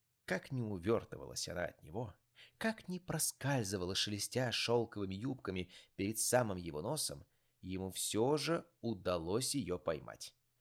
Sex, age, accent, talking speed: male, 30-49, native, 125 wpm